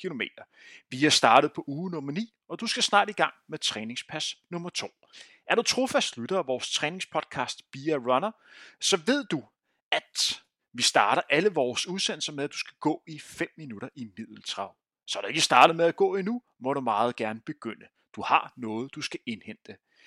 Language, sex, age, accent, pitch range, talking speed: Danish, male, 30-49, native, 135-195 Hz, 195 wpm